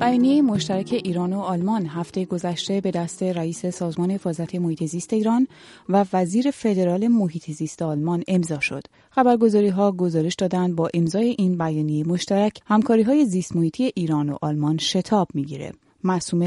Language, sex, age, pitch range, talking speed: Persian, female, 30-49, 160-210 Hz, 155 wpm